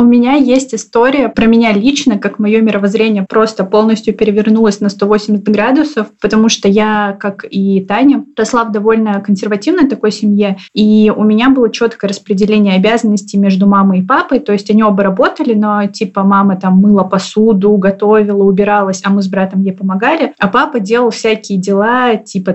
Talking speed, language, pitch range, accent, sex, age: 170 wpm, Russian, 200-225 Hz, native, female, 20-39